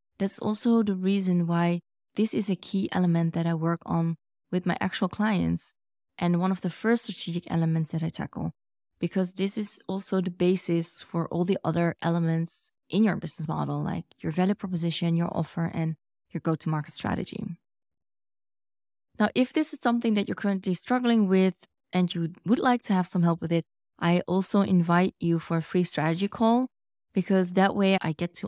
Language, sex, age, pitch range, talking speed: English, female, 20-39, 170-200 Hz, 185 wpm